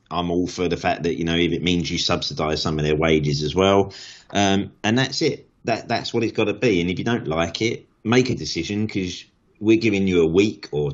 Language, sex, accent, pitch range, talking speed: English, male, British, 80-100 Hz, 250 wpm